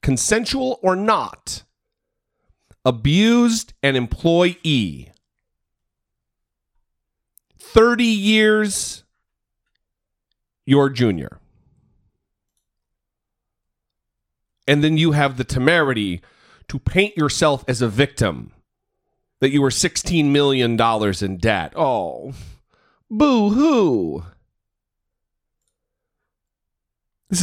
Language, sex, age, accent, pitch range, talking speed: English, male, 40-59, American, 105-165 Hz, 70 wpm